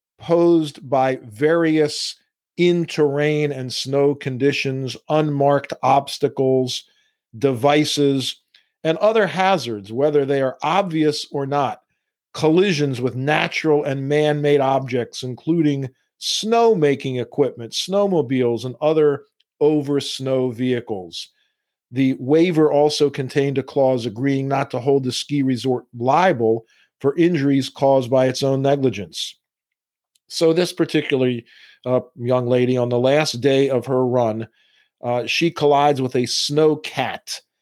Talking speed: 120 wpm